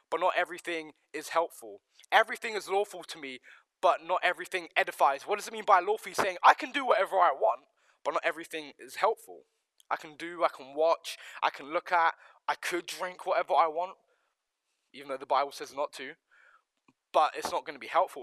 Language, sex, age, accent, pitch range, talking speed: English, male, 20-39, British, 165-205 Hz, 205 wpm